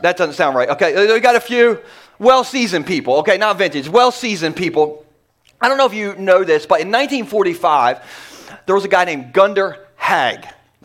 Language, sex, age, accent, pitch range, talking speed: English, male, 30-49, American, 165-235 Hz, 190 wpm